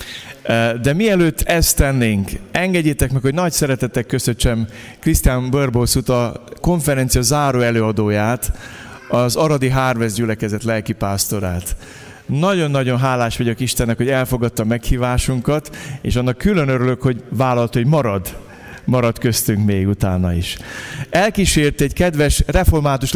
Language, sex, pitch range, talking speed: Hungarian, male, 115-145 Hz, 115 wpm